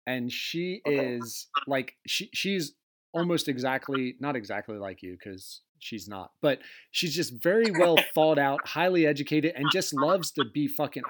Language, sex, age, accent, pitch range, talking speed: English, male, 30-49, American, 120-165 Hz, 160 wpm